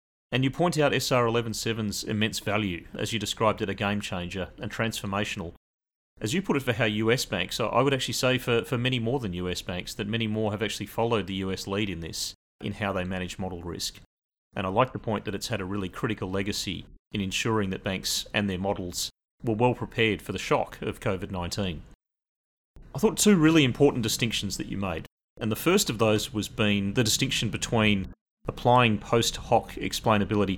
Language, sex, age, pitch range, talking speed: English, male, 30-49, 95-115 Hz, 200 wpm